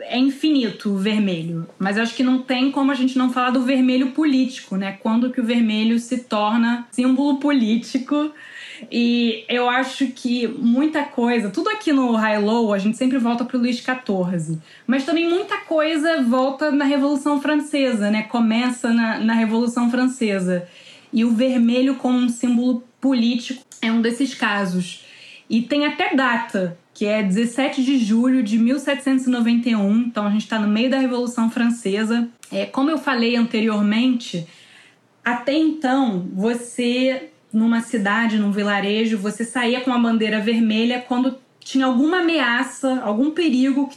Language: Portuguese